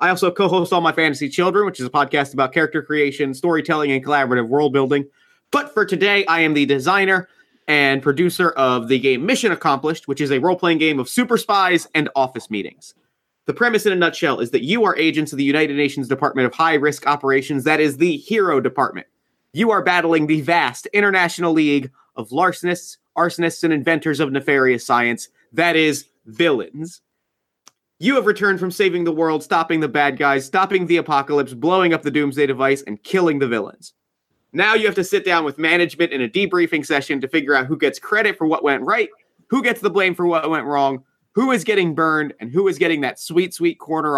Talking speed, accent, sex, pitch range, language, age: 205 wpm, American, male, 140-175 Hz, English, 30-49